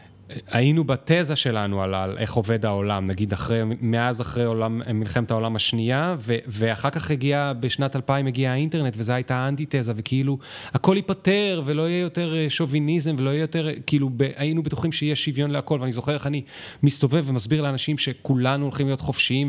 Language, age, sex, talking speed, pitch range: Hebrew, 30-49, male, 170 wpm, 105-135 Hz